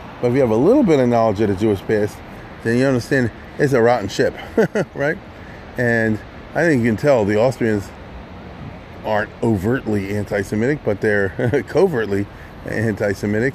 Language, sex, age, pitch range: English, male, 30-49, 100-130 Hz